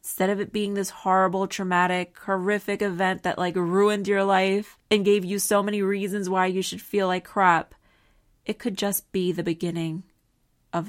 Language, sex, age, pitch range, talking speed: English, female, 20-39, 175-210 Hz, 180 wpm